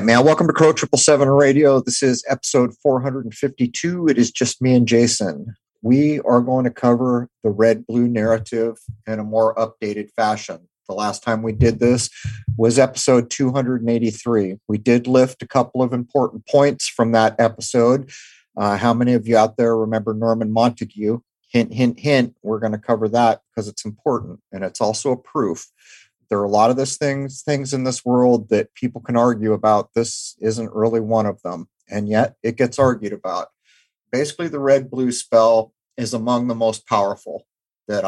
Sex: male